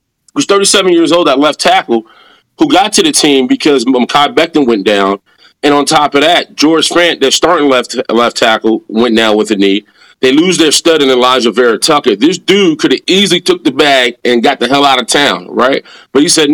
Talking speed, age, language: 220 wpm, 30-49, English